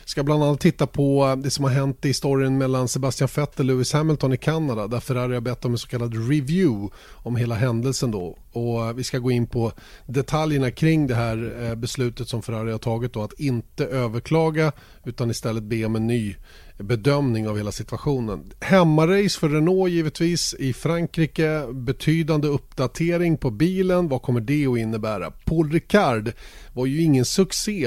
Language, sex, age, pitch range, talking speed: Swedish, male, 30-49, 115-145 Hz, 180 wpm